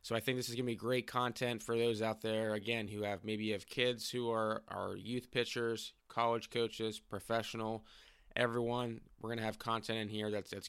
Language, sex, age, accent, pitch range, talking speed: English, male, 20-39, American, 105-120 Hz, 210 wpm